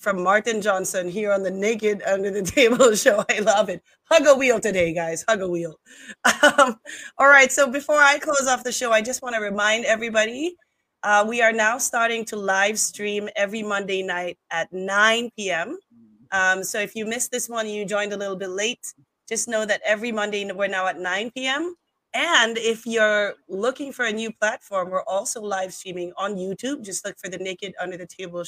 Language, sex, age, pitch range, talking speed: English, female, 30-49, 185-230 Hz, 200 wpm